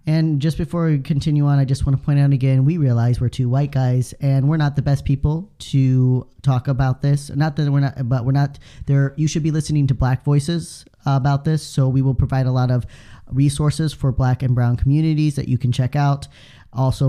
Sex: male